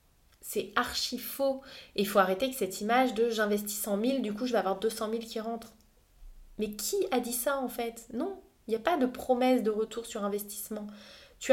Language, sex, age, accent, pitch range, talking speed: English, female, 20-39, French, 190-235 Hz, 220 wpm